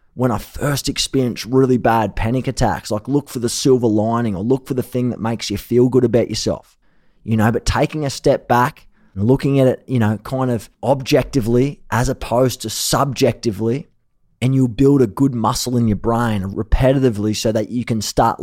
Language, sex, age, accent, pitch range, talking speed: English, male, 20-39, Australian, 110-130 Hz, 200 wpm